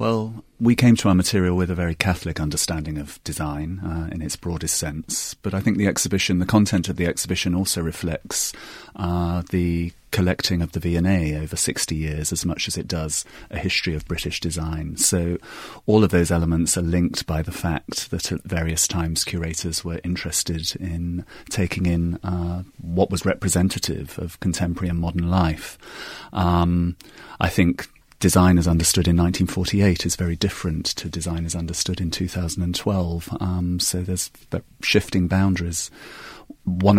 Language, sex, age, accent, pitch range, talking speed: English, male, 30-49, British, 85-95 Hz, 165 wpm